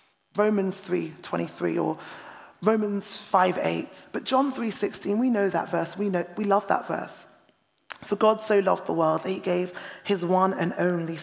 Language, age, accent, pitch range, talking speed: English, 20-39, British, 175-210 Hz, 170 wpm